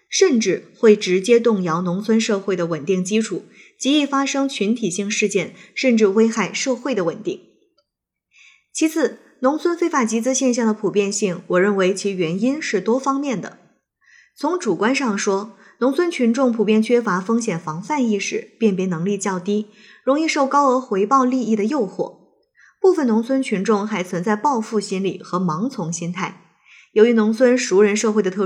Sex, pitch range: female, 190-260 Hz